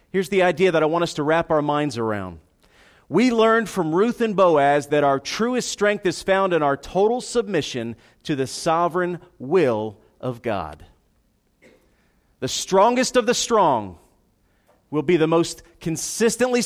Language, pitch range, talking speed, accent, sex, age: English, 140-190 Hz, 160 wpm, American, male, 40-59